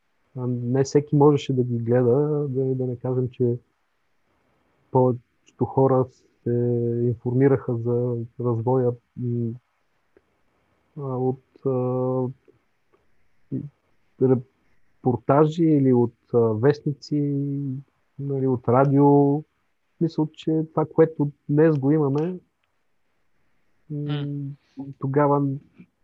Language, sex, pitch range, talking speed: Bulgarian, male, 125-145 Hz, 85 wpm